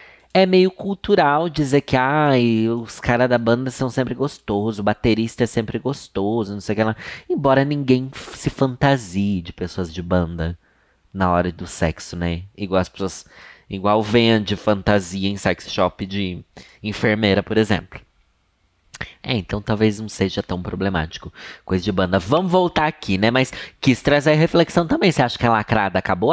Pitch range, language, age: 105-155 Hz, Portuguese, 20-39